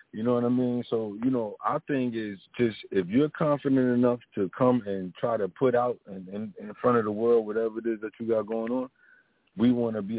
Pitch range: 100-125 Hz